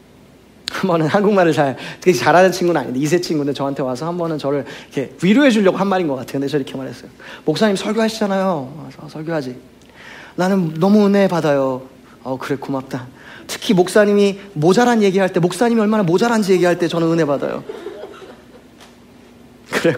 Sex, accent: male, Korean